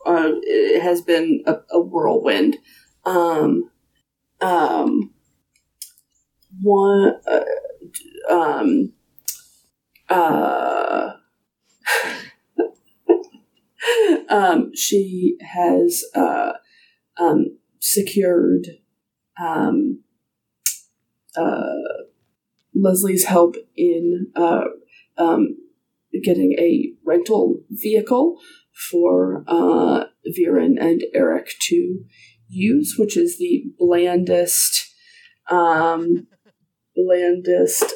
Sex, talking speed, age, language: female, 70 wpm, 30-49, English